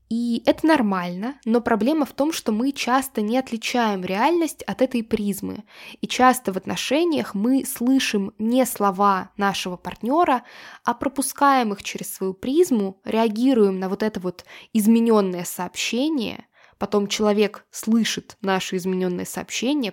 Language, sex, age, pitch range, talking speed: Russian, female, 10-29, 200-255 Hz, 135 wpm